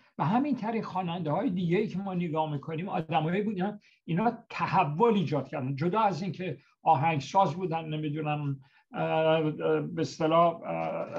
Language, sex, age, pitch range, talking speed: Persian, male, 60-79, 150-195 Hz, 140 wpm